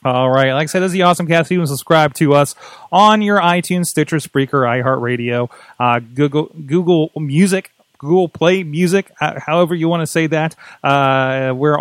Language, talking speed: English, 175 wpm